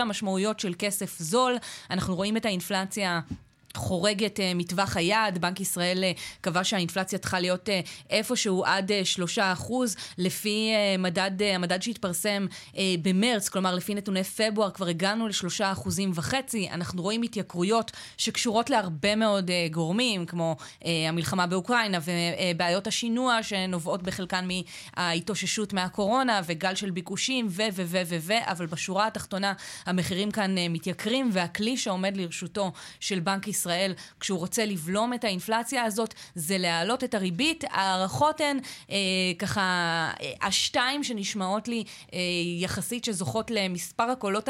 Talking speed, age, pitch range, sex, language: 140 wpm, 20-39, 180-215 Hz, female, Hebrew